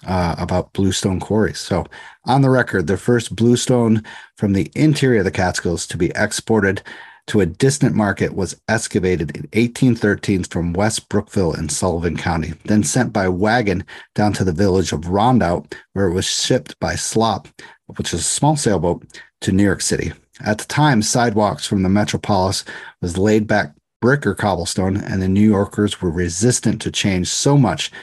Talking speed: 175 wpm